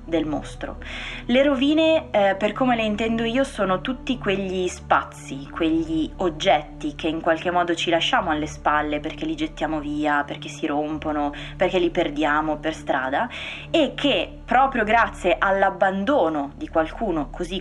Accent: native